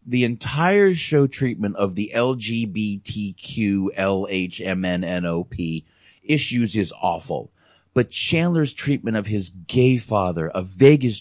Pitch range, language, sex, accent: 95-120 Hz, English, male, American